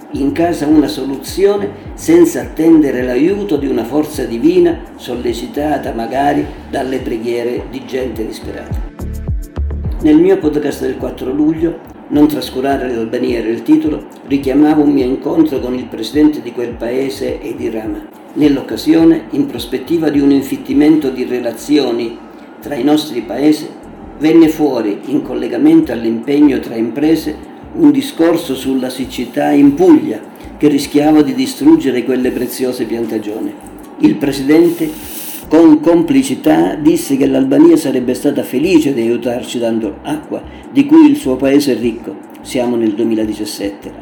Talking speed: 130 wpm